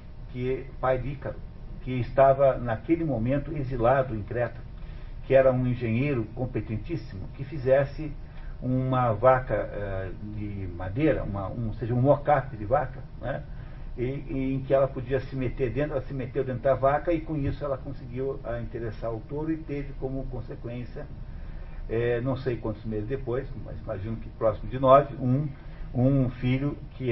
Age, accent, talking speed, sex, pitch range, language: 60-79, Brazilian, 165 wpm, male, 115-140 Hz, Portuguese